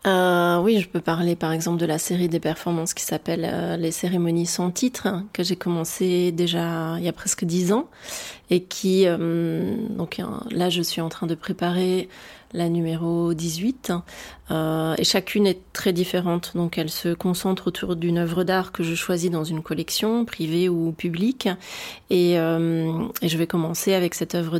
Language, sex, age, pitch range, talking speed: French, female, 30-49, 170-195 Hz, 180 wpm